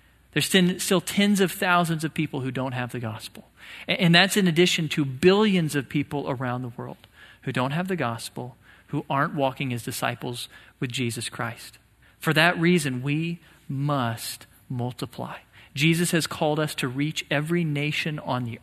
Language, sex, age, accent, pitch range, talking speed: English, male, 40-59, American, 135-170 Hz, 170 wpm